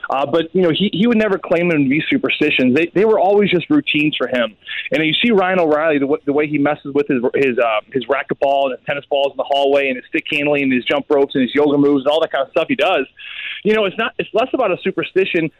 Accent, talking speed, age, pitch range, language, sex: American, 285 wpm, 30-49, 145-180 Hz, English, male